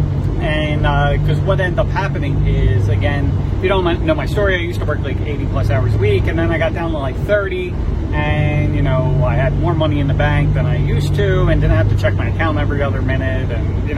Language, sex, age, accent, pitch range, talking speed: English, male, 30-49, American, 90-105 Hz, 250 wpm